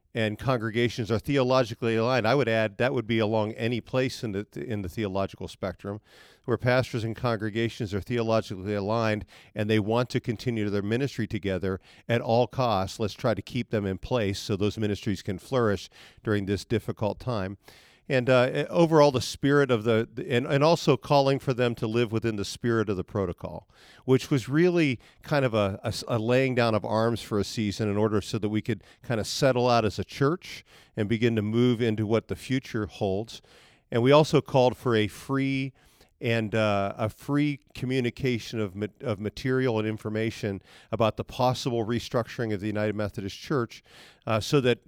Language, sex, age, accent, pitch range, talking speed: English, male, 50-69, American, 105-125 Hz, 190 wpm